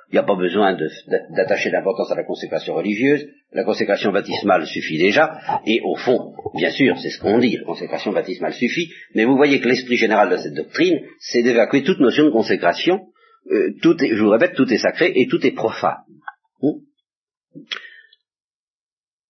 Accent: French